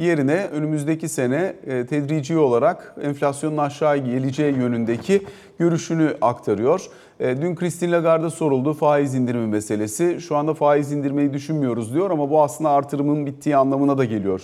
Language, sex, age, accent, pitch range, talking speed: Turkish, male, 40-59, native, 135-170 Hz, 135 wpm